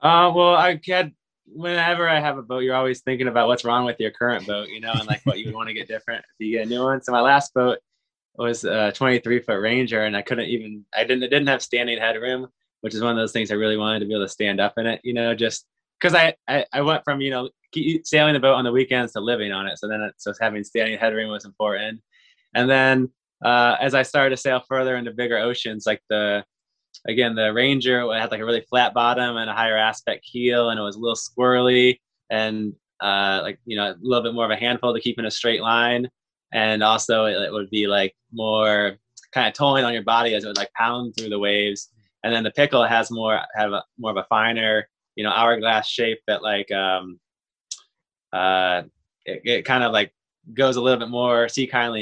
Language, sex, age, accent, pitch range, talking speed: English, male, 20-39, American, 110-125 Hz, 240 wpm